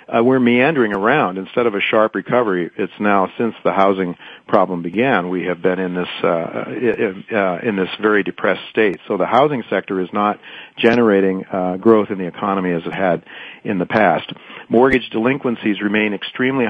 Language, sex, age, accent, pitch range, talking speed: English, male, 50-69, American, 95-115 Hz, 185 wpm